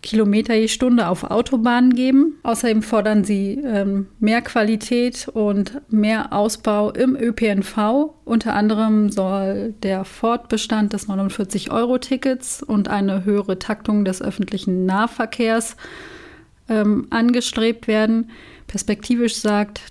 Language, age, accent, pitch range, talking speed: German, 30-49, German, 195-230 Hz, 110 wpm